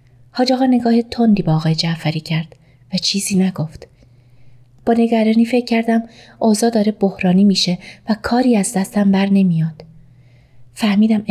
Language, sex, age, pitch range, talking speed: Persian, female, 30-49, 170-255 Hz, 125 wpm